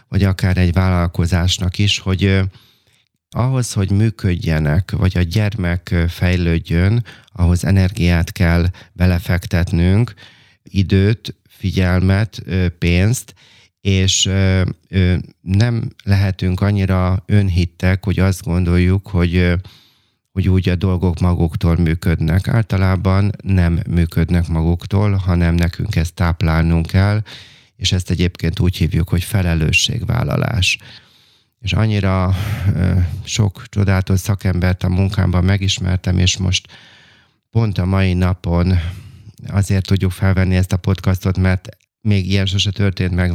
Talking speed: 105 wpm